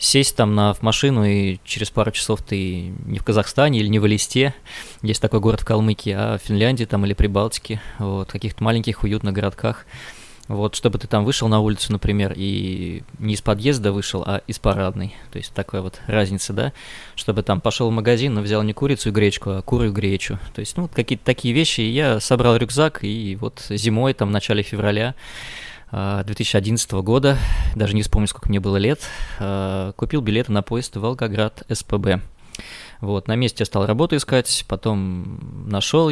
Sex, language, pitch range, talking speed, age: male, Russian, 100-115 Hz, 185 wpm, 20-39